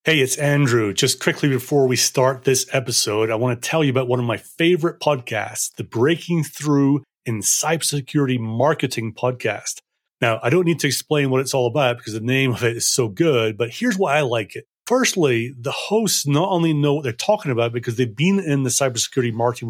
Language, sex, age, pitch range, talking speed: English, male, 30-49, 120-155 Hz, 210 wpm